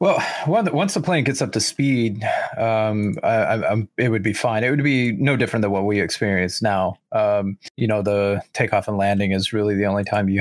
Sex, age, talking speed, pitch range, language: male, 30-49, 220 wpm, 100-120 Hz, English